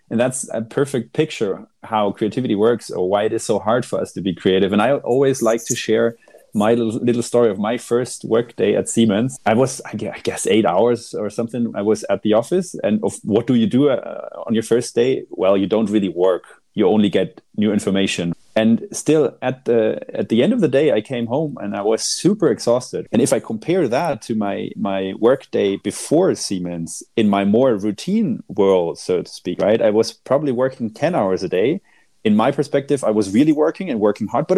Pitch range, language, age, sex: 110-140 Hz, German, 30-49, male